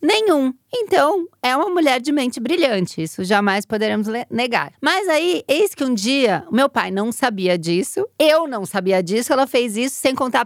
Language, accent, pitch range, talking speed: Portuguese, Brazilian, 210-275 Hz, 190 wpm